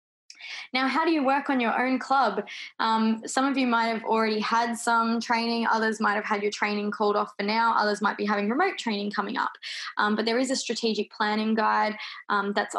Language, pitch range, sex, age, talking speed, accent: English, 210-240 Hz, female, 20-39, 220 wpm, Australian